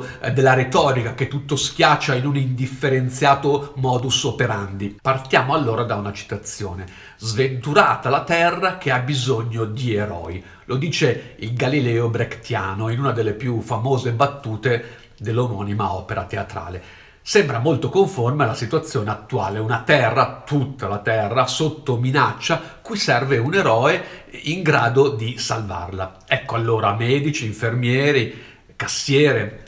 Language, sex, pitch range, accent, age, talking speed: Italian, male, 110-140 Hz, native, 50-69, 125 wpm